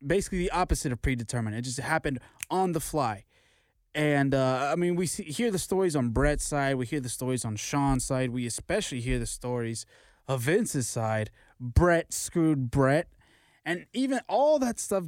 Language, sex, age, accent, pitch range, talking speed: English, male, 20-39, American, 125-160 Hz, 185 wpm